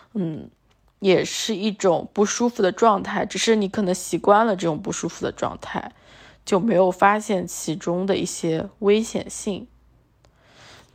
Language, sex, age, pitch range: Chinese, female, 20-39, 180-230 Hz